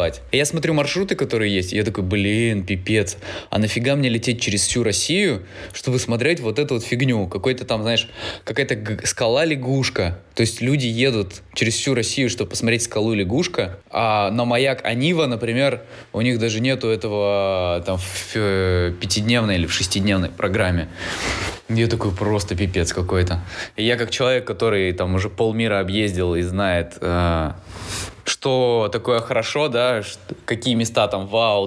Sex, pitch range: male, 95-120 Hz